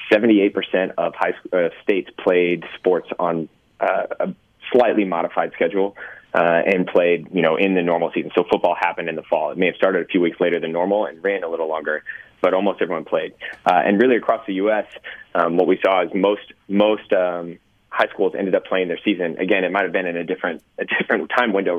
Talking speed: 225 wpm